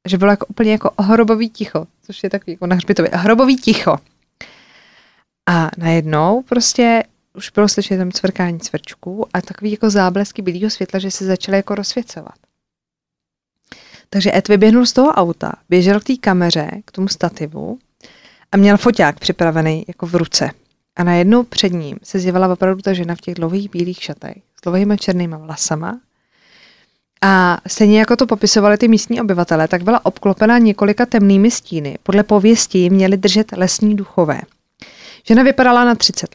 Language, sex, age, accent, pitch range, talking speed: Czech, female, 20-39, native, 180-225 Hz, 160 wpm